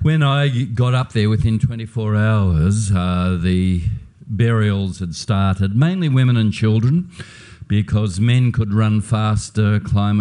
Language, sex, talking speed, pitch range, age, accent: English, male, 135 wpm, 95-120 Hz, 50-69, Australian